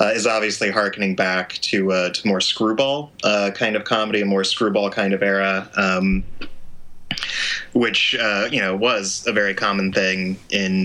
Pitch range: 90-100 Hz